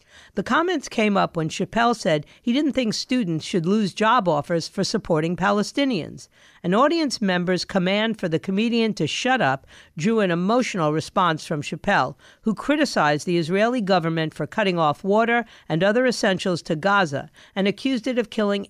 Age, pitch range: 50-69, 170-225 Hz